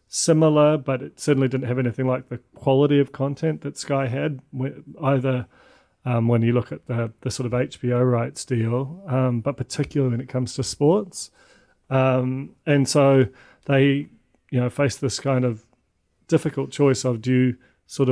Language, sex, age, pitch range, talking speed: English, male, 30-49, 120-135 Hz, 170 wpm